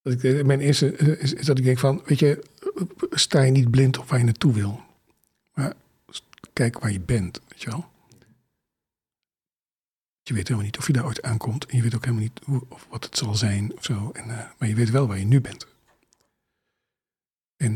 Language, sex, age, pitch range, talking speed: Dutch, male, 50-69, 115-140 Hz, 205 wpm